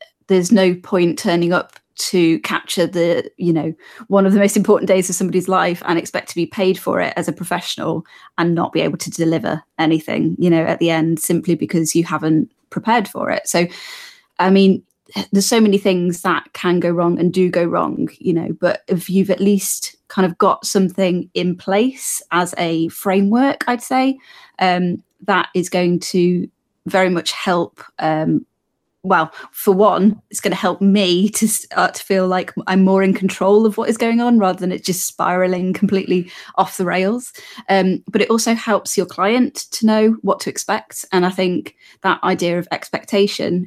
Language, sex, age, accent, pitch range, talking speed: English, female, 20-39, British, 175-200 Hz, 190 wpm